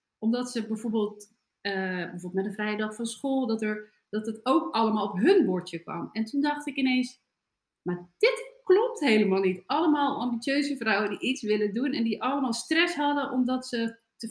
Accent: Dutch